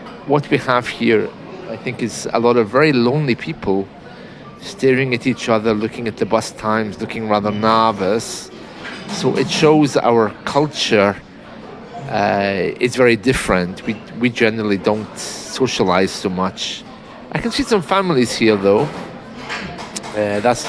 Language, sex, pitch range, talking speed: English, male, 110-150 Hz, 145 wpm